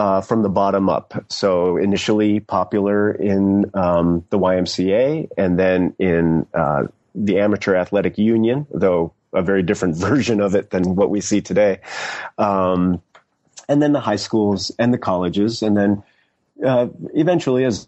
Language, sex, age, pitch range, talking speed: English, male, 30-49, 95-110 Hz, 155 wpm